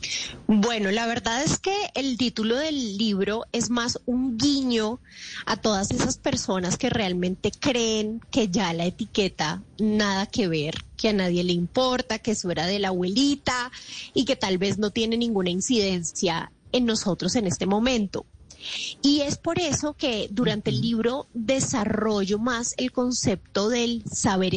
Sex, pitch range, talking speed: female, 195-245 Hz, 160 wpm